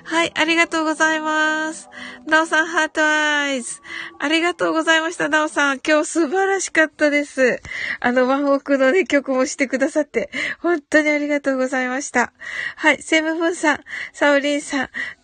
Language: Japanese